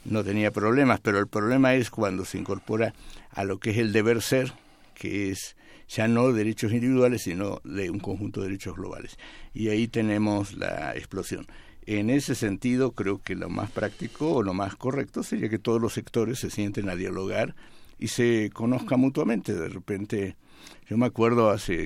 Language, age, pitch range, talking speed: Spanish, 60-79, 100-120 Hz, 180 wpm